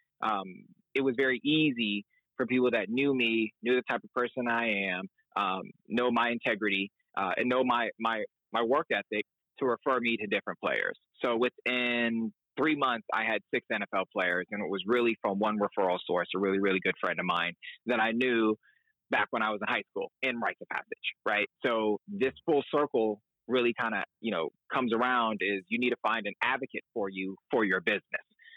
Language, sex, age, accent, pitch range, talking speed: English, male, 20-39, American, 105-130 Hz, 205 wpm